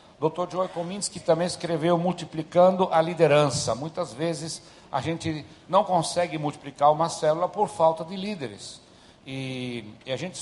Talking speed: 145 wpm